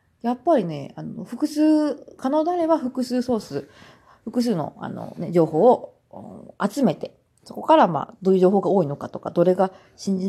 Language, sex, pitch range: Japanese, female, 175-250 Hz